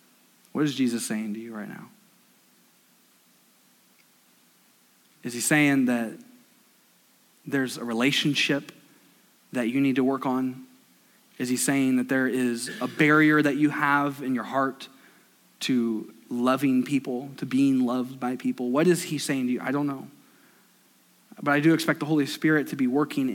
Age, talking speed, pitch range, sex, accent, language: 20-39, 160 wpm, 130-200 Hz, male, American, English